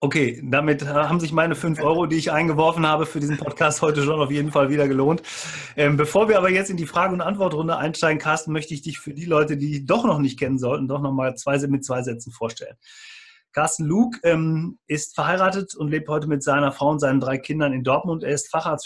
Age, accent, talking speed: 30-49, German, 225 wpm